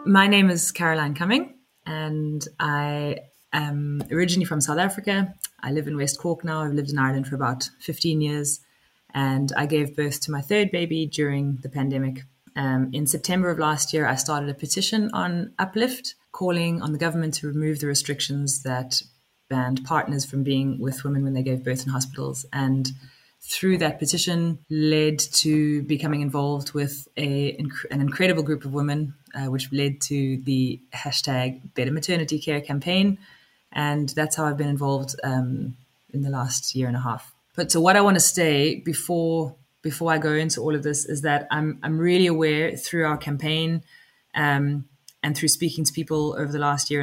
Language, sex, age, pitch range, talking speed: English, female, 20-39, 140-160 Hz, 180 wpm